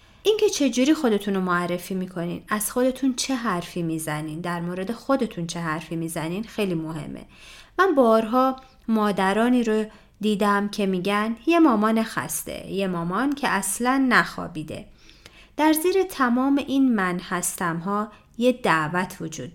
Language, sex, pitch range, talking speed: Persian, female, 175-255 Hz, 135 wpm